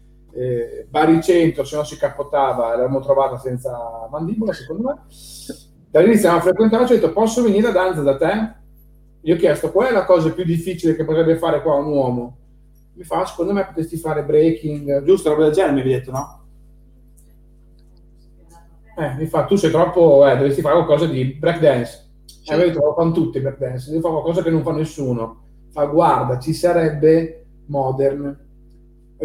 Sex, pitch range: male, 135-175 Hz